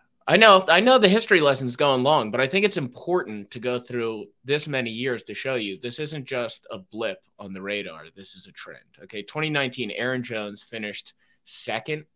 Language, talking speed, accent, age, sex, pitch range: English, 205 wpm, American, 20-39, male, 110-140 Hz